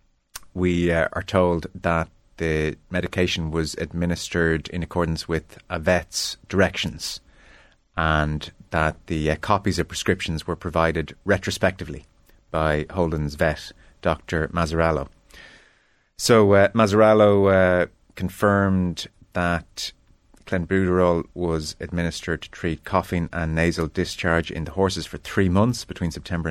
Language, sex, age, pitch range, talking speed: English, male, 30-49, 80-95 Hz, 120 wpm